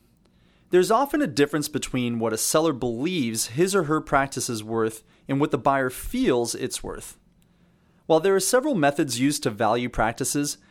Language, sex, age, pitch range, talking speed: English, male, 30-49, 120-175 Hz, 175 wpm